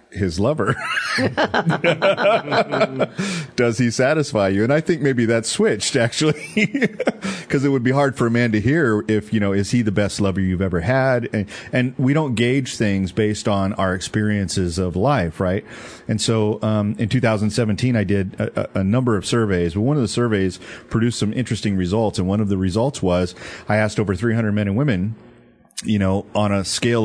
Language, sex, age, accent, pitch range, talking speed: English, male, 40-59, American, 100-125 Hz, 190 wpm